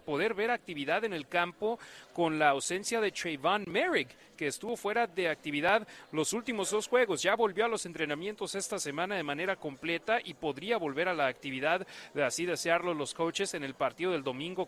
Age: 40-59